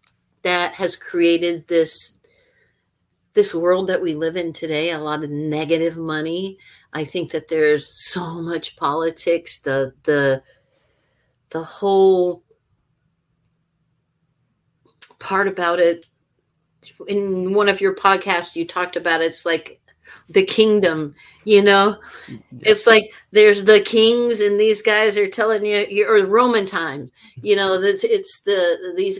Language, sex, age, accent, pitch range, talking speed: English, female, 50-69, American, 155-195 Hz, 130 wpm